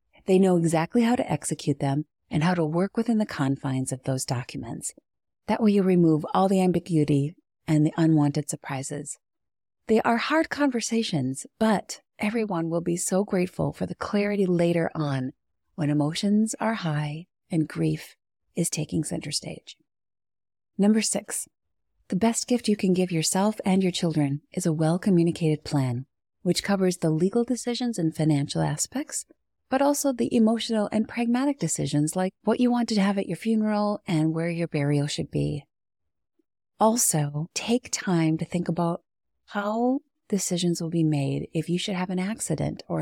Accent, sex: American, female